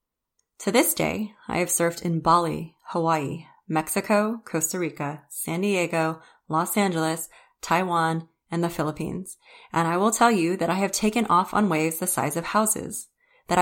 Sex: female